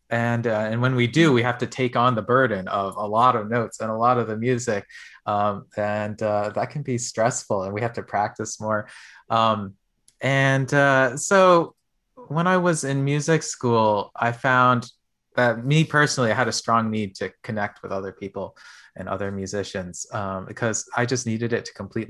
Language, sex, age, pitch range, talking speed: English, male, 20-39, 105-125 Hz, 200 wpm